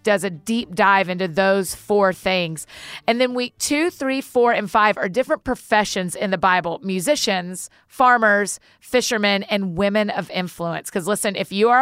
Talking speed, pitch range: 175 wpm, 185-220 Hz